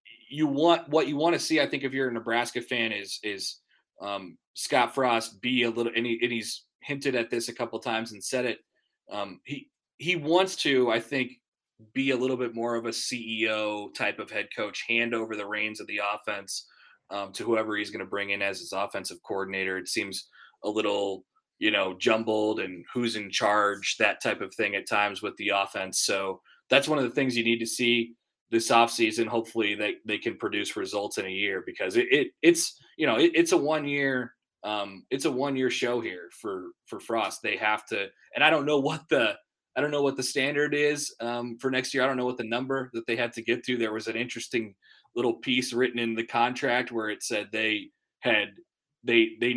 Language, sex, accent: English, male, American